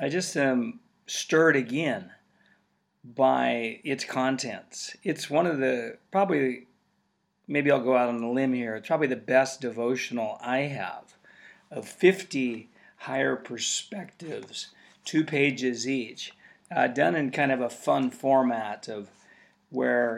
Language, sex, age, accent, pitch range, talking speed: English, male, 40-59, American, 120-140 Hz, 135 wpm